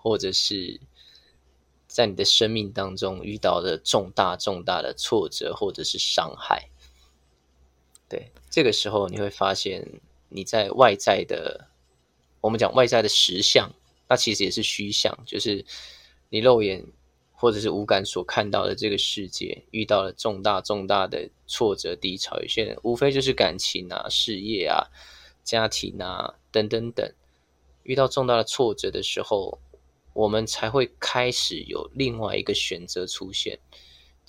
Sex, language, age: male, Chinese, 20-39